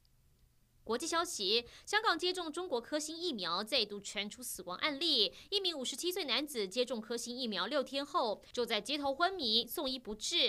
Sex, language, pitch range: female, Chinese, 220-320 Hz